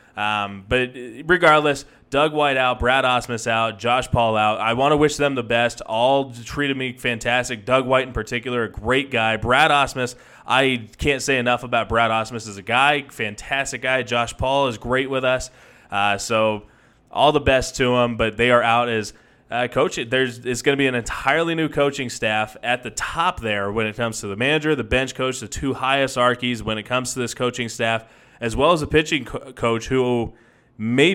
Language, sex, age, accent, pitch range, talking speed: English, male, 20-39, American, 115-140 Hz, 205 wpm